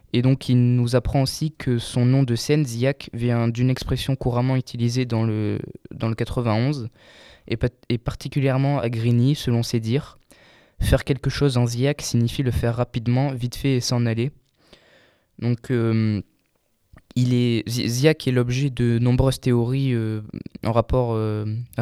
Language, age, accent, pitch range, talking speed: French, 20-39, French, 115-135 Hz, 155 wpm